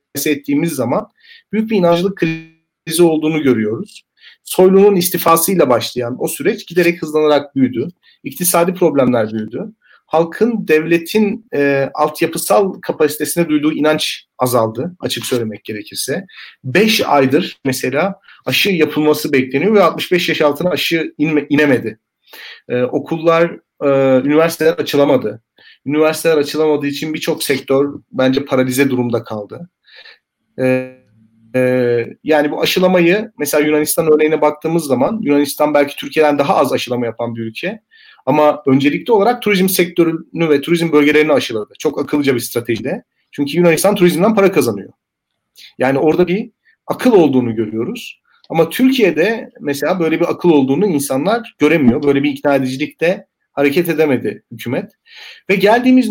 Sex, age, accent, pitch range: male, 40-59, native, 140-180 Hz